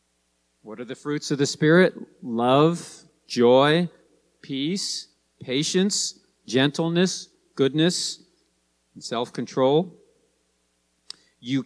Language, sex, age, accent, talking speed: English, male, 50-69, American, 80 wpm